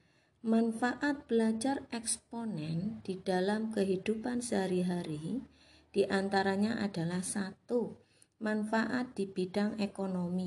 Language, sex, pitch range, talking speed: Indonesian, female, 175-225 Hz, 80 wpm